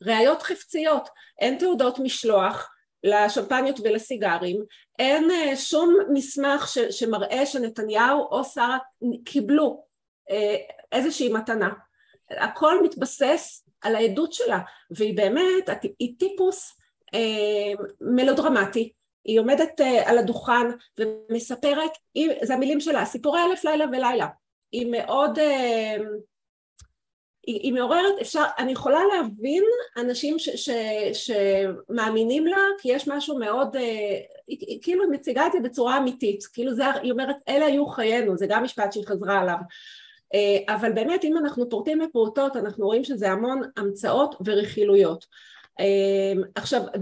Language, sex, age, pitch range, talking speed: Hebrew, female, 40-59, 215-295 Hz, 115 wpm